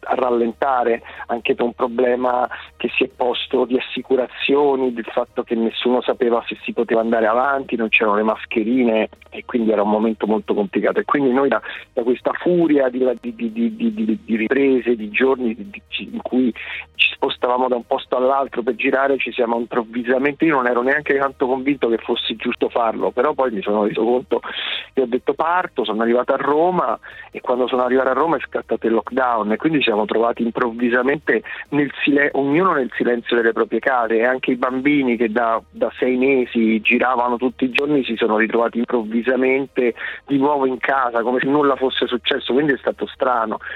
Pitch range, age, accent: 115-130 Hz, 40-59, native